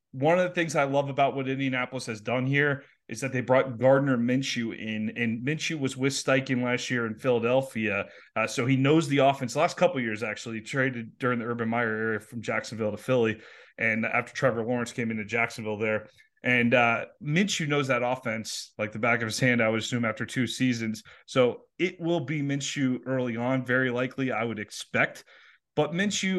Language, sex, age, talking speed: English, male, 30-49, 205 wpm